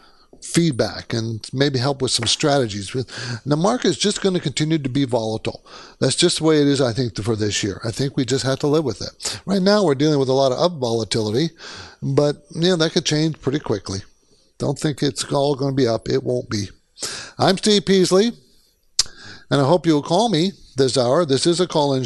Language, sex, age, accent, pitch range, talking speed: English, male, 50-69, American, 130-160 Hz, 220 wpm